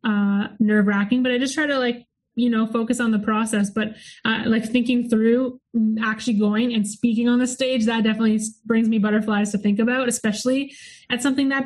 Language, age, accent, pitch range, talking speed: English, 20-39, American, 215-245 Hz, 200 wpm